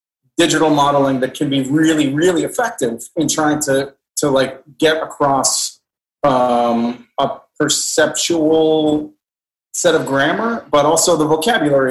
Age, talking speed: 30-49, 125 wpm